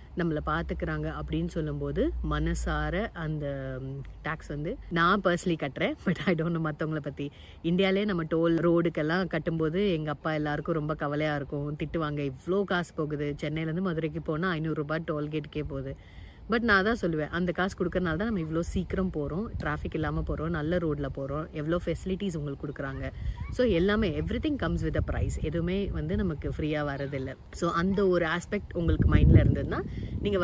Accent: native